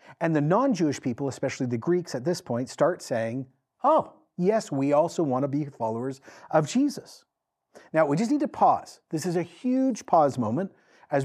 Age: 50-69